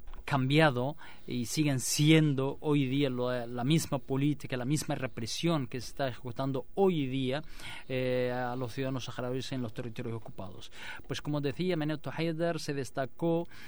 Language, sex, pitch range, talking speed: Spanish, male, 130-165 Hz, 155 wpm